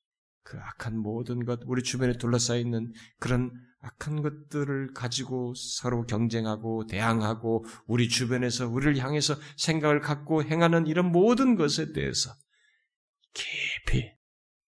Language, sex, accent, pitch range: Korean, male, native, 105-165 Hz